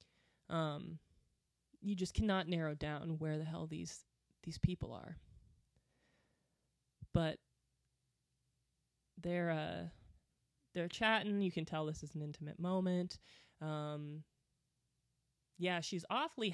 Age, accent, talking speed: 20-39, American, 110 wpm